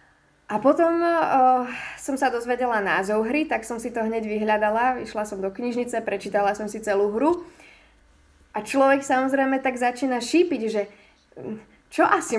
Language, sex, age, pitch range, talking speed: Slovak, female, 20-39, 205-270 Hz, 155 wpm